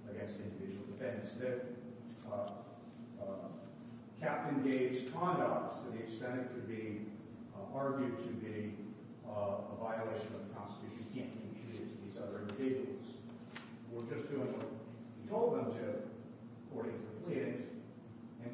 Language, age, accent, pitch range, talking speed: English, 40-59, American, 115-130 Hz, 140 wpm